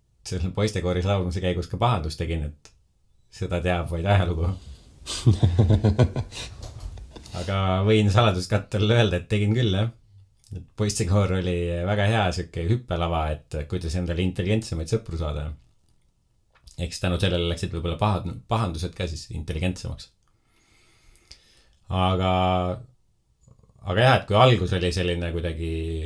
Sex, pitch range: male, 80-105 Hz